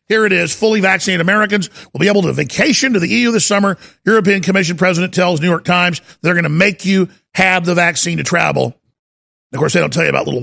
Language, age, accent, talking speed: English, 50-69, American, 235 wpm